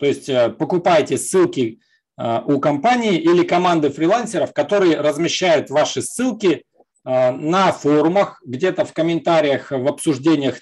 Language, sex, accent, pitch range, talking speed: Russian, male, native, 145-205 Hz, 115 wpm